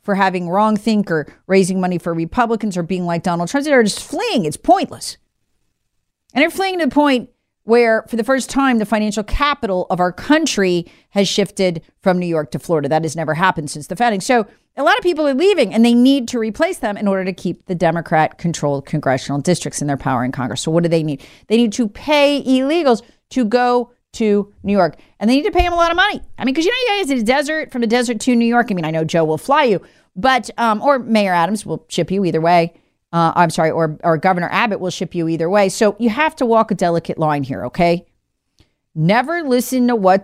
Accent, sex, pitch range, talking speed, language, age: American, female, 170-240 Hz, 240 wpm, English, 40-59